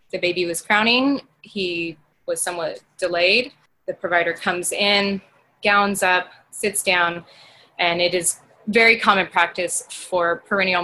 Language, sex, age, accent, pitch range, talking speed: English, female, 20-39, American, 175-210 Hz, 135 wpm